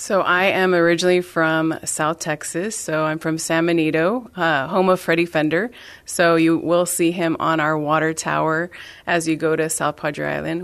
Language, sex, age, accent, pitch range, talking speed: English, female, 30-49, American, 150-165 Hz, 185 wpm